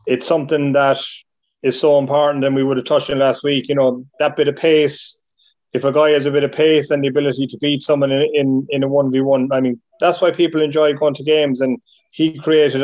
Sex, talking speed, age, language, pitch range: male, 250 wpm, 20-39, English, 130-145 Hz